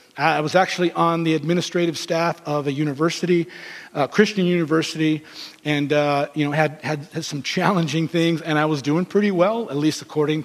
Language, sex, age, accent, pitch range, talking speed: English, male, 40-59, American, 155-175 Hz, 185 wpm